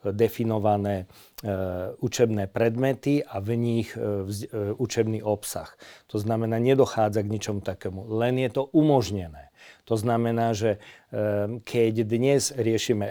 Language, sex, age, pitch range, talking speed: Slovak, male, 40-59, 105-125 Hz, 135 wpm